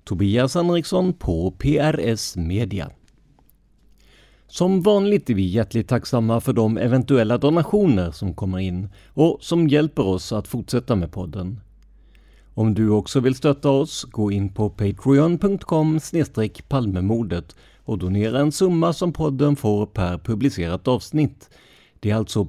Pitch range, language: 100-145 Hz, Swedish